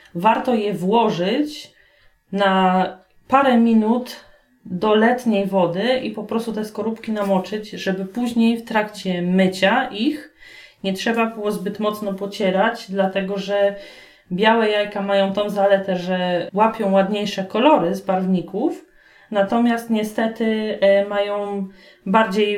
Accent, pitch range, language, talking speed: native, 195-230 Hz, Polish, 115 wpm